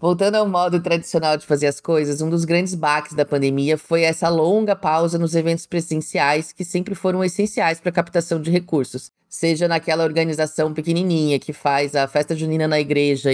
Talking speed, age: 185 wpm, 20-39